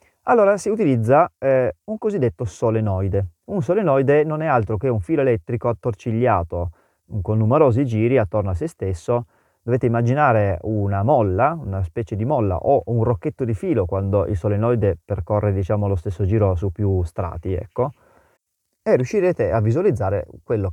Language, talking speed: Italian, 155 wpm